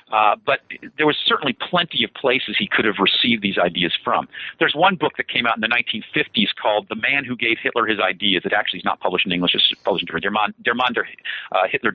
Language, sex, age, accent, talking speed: English, male, 50-69, American, 235 wpm